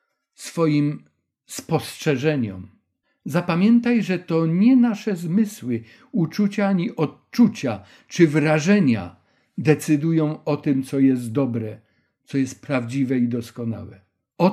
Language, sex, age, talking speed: Polish, male, 50-69, 105 wpm